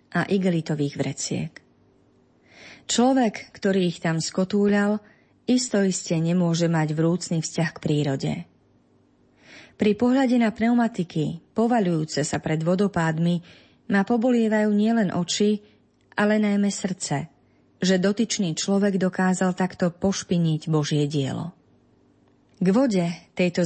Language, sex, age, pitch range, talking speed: Slovak, female, 30-49, 165-205 Hz, 105 wpm